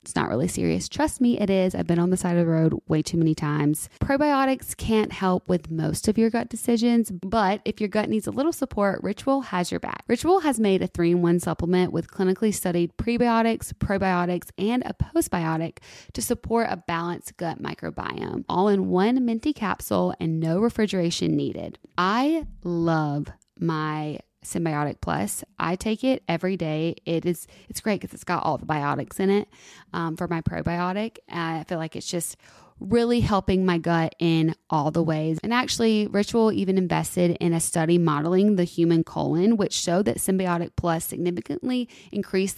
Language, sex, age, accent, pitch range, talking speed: English, female, 20-39, American, 165-220 Hz, 180 wpm